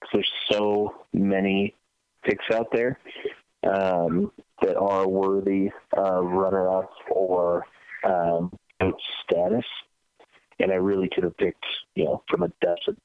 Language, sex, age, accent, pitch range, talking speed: English, male, 30-49, American, 90-110 Hz, 125 wpm